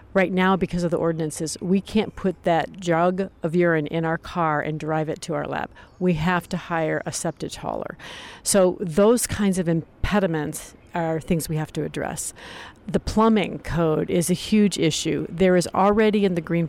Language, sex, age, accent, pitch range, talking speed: English, female, 50-69, American, 160-195 Hz, 190 wpm